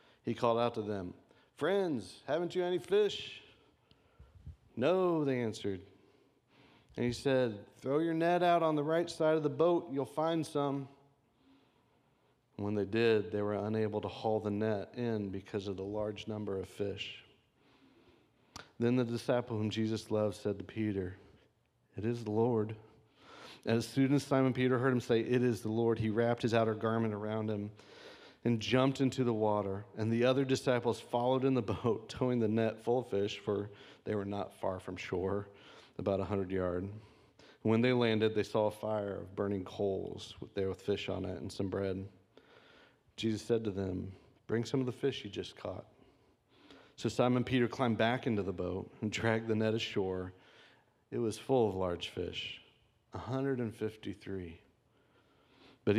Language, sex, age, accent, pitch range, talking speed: English, male, 40-59, American, 100-125 Hz, 175 wpm